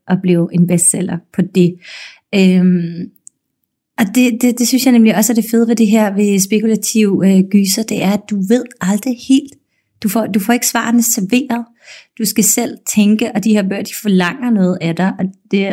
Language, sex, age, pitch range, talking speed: Danish, female, 30-49, 180-220 Hz, 205 wpm